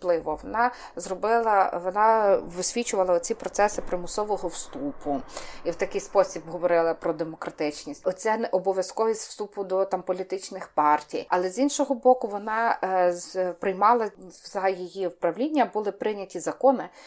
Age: 30-49